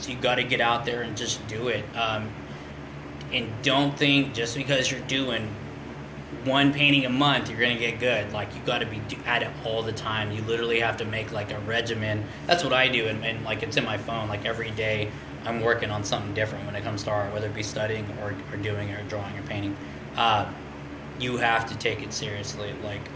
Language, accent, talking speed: English, American, 230 wpm